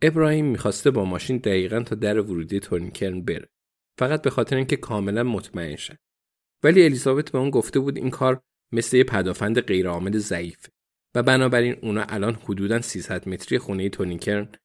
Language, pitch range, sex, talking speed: Persian, 105-140 Hz, male, 165 wpm